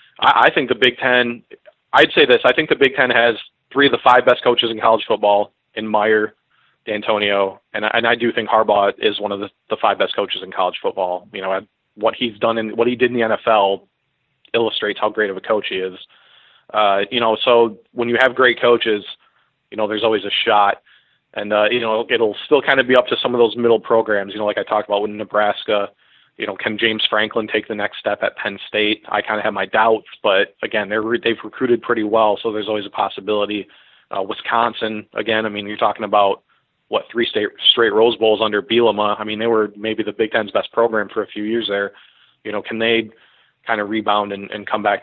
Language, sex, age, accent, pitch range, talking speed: English, male, 30-49, American, 105-115 Hz, 230 wpm